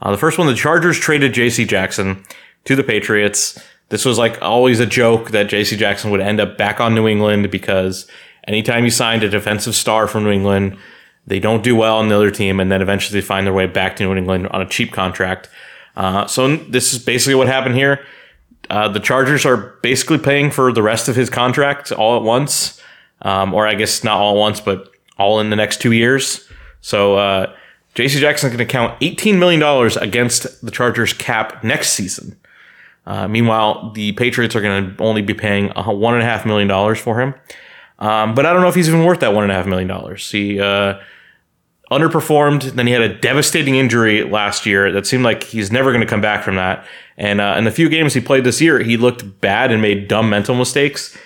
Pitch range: 100-130 Hz